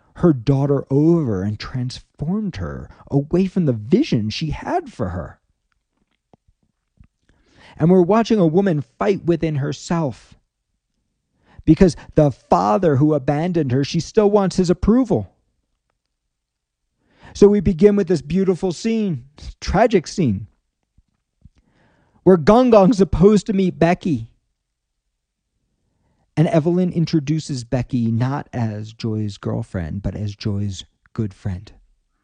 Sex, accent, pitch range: male, American, 105-175 Hz